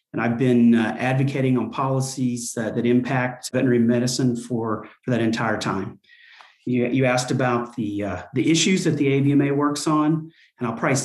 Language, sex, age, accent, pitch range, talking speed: English, male, 40-59, American, 120-145 Hz, 180 wpm